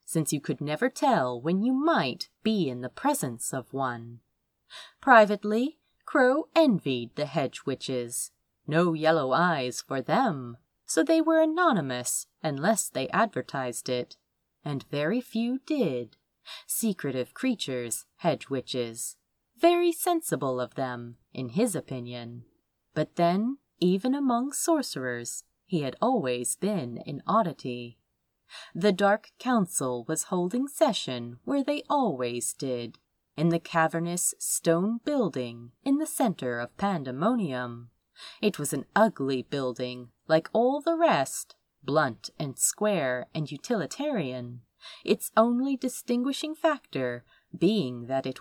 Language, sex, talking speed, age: English, female, 120 wpm, 30-49